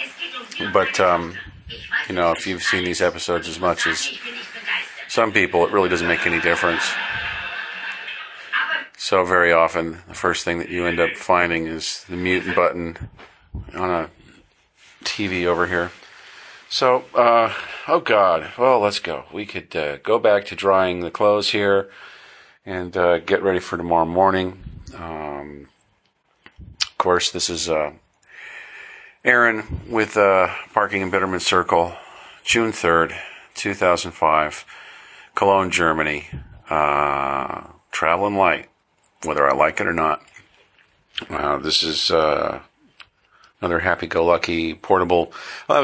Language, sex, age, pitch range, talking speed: English, male, 40-59, 85-100 Hz, 135 wpm